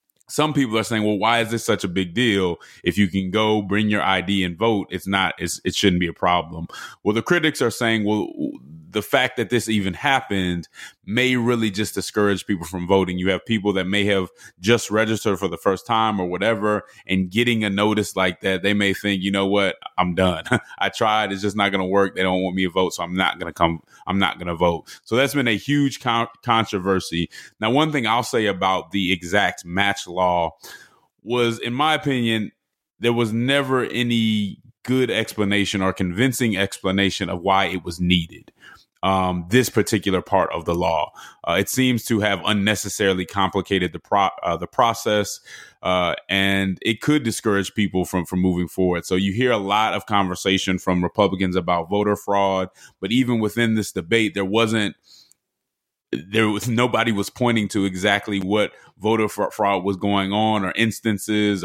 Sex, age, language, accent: male, 20-39, English, American